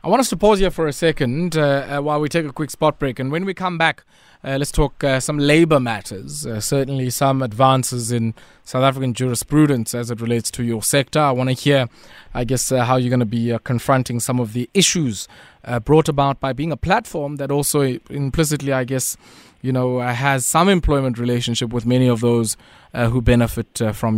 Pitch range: 120-155 Hz